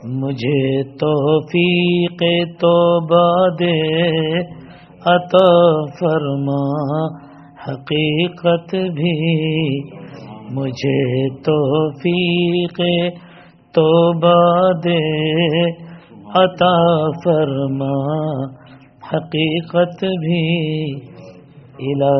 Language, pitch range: English, 145-180 Hz